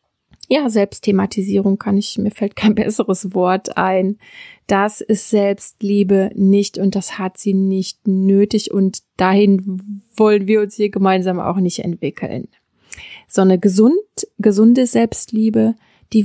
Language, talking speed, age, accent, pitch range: German, 135 wpm, 20-39, German, 200-225 Hz